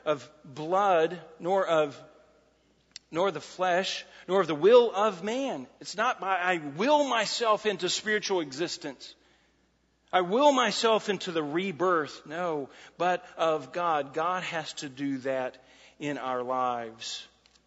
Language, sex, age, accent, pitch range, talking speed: English, male, 40-59, American, 150-200 Hz, 135 wpm